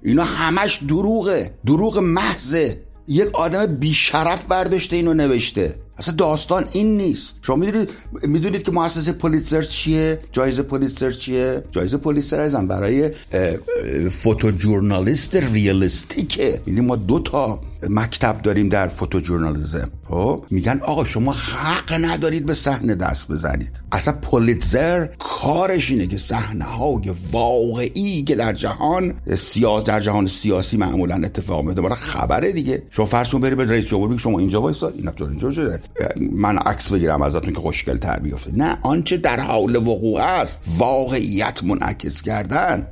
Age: 60-79